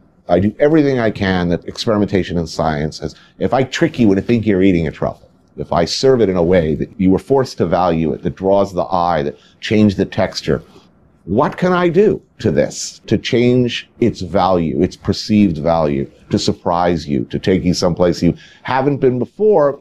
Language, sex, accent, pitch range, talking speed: English, male, American, 85-110 Hz, 205 wpm